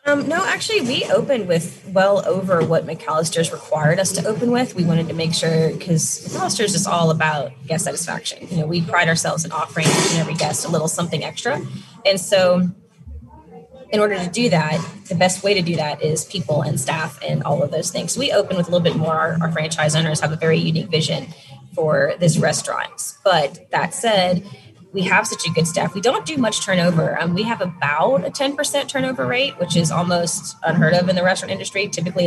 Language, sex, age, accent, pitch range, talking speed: English, female, 20-39, American, 160-190 Hz, 210 wpm